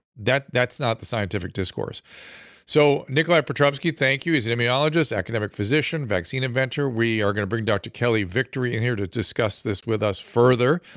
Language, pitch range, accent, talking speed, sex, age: English, 105-135 Hz, American, 185 wpm, male, 50-69